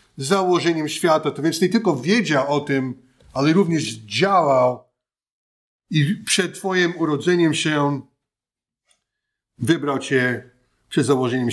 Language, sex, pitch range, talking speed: Polish, male, 145-190 Hz, 110 wpm